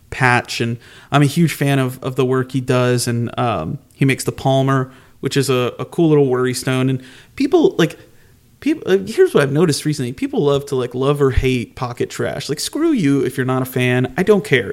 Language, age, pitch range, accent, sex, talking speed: English, 30-49, 120-140 Hz, American, male, 230 wpm